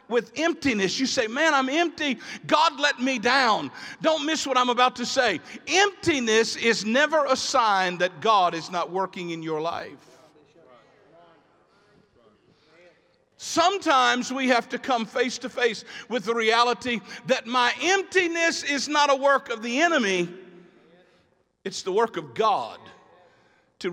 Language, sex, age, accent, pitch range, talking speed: English, male, 50-69, American, 175-270 Hz, 145 wpm